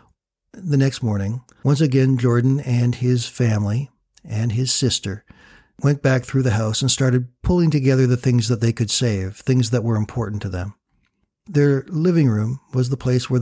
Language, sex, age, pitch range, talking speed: English, male, 60-79, 120-150 Hz, 180 wpm